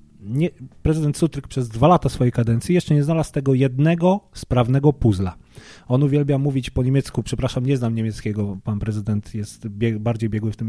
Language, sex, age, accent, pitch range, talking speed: Polish, male, 30-49, native, 110-130 Hz, 170 wpm